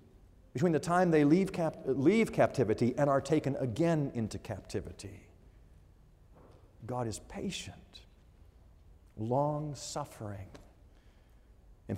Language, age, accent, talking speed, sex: English, 40-59, American, 95 wpm, male